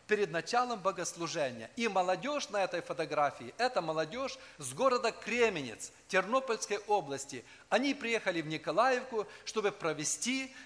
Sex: male